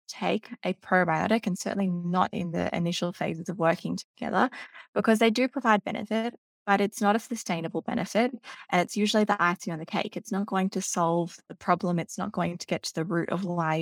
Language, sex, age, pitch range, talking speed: English, female, 20-39, 165-210 Hz, 215 wpm